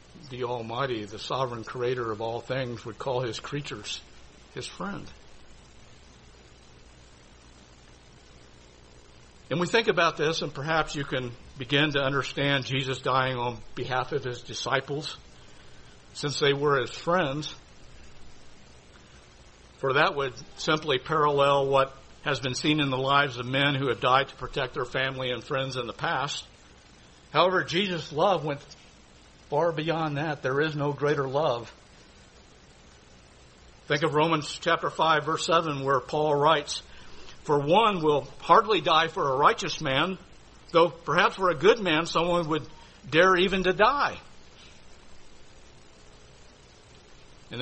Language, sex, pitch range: English, male, 105-160 Hz